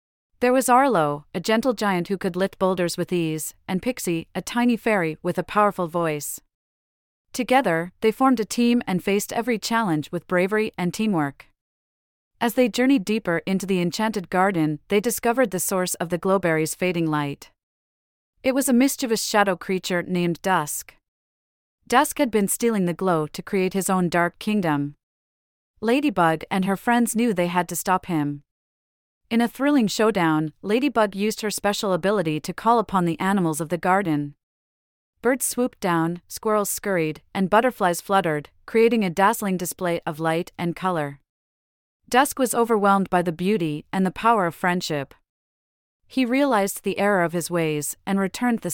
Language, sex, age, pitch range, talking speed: English, female, 30-49, 160-220 Hz, 165 wpm